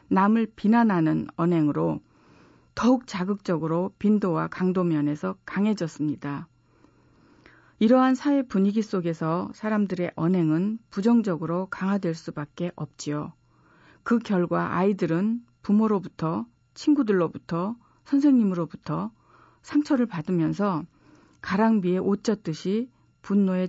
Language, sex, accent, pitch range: Korean, female, native, 160-230 Hz